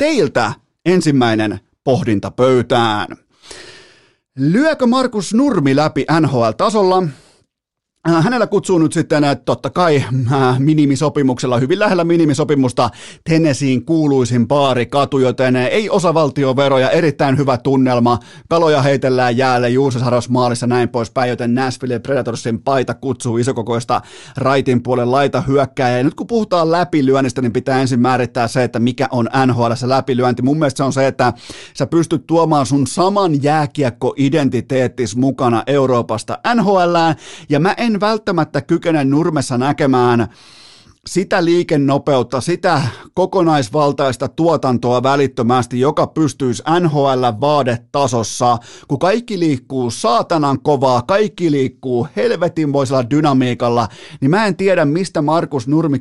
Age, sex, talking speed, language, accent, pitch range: 30-49, male, 120 wpm, Finnish, native, 125-160 Hz